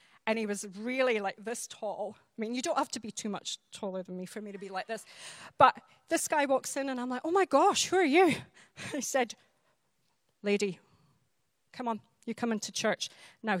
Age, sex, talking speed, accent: 30-49, female, 215 wpm, British